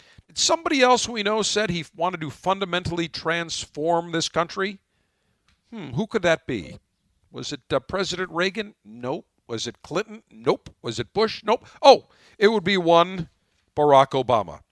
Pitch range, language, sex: 135-190 Hz, English, male